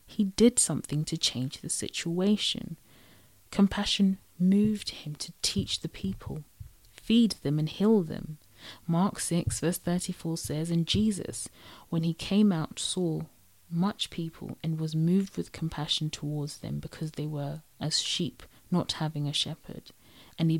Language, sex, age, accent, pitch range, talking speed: English, female, 30-49, British, 140-175 Hz, 150 wpm